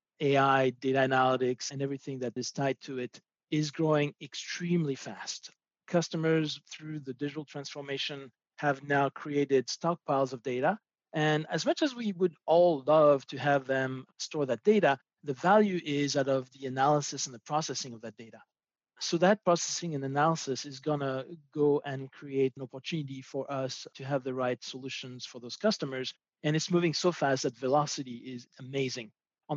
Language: English